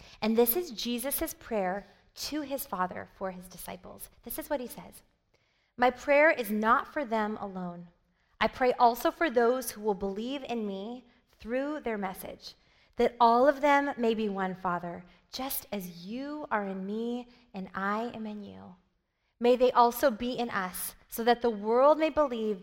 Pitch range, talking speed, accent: 200-255 Hz, 180 wpm, American